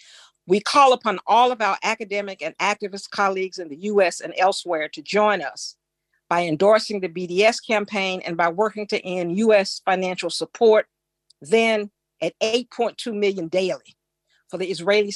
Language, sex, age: English, female, 50-69